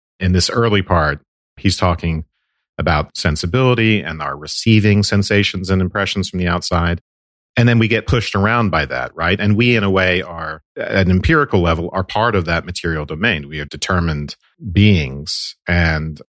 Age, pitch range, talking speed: 40-59, 85-105 Hz, 175 wpm